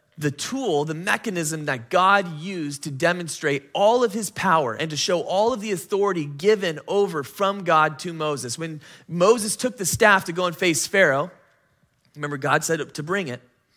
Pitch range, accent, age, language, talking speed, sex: 145-180 Hz, American, 20-39, English, 185 wpm, male